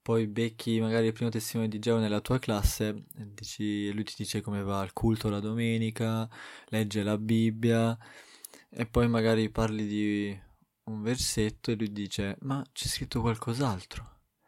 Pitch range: 105-120 Hz